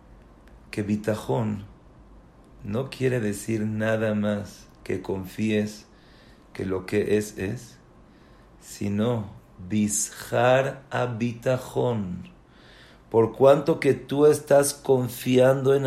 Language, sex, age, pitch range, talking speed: English, male, 50-69, 105-145 Hz, 95 wpm